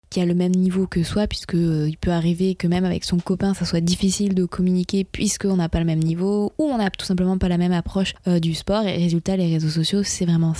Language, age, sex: French, 20-39, female